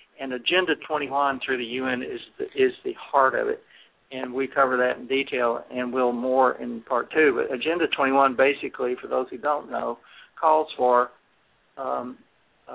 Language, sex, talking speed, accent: English, male, 170 wpm, American